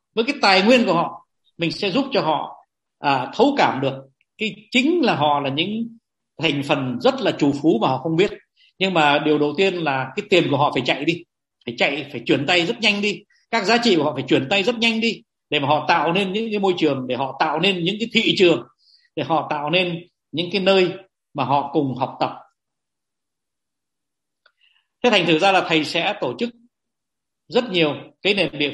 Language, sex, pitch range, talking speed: Vietnamese, male, 160-215 Hz, 220 wpm